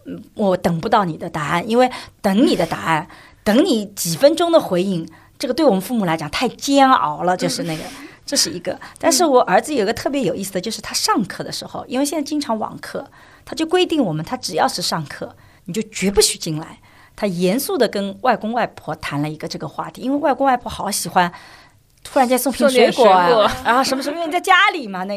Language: Chinese